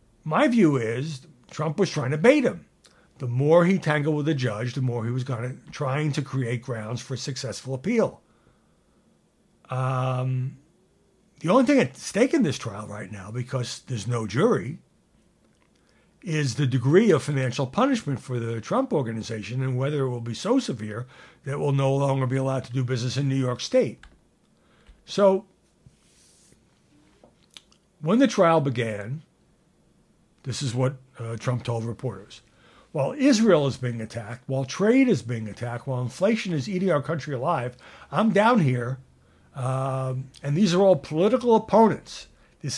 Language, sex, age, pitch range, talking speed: English, male, 60-79, 125-175 Hz, 160 wpm